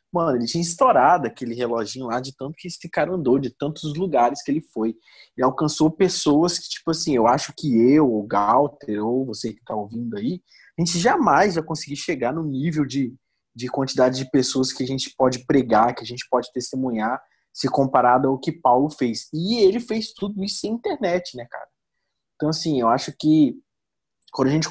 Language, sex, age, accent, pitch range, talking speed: Portuguese, male, 20-39, Brazilian, 125-170 Hz, 200 wpm